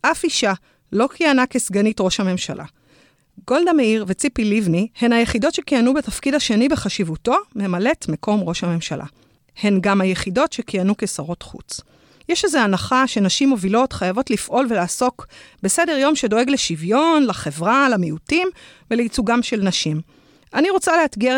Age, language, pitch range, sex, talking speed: 30-49, Hebrew, 190-275 Hz, female, 130 wpm